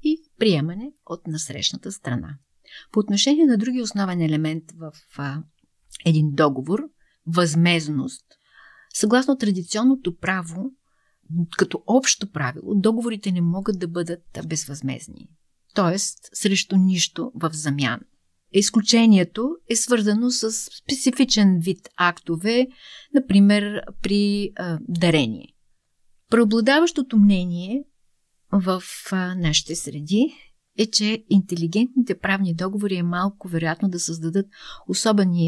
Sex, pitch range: female, 165-220 Hz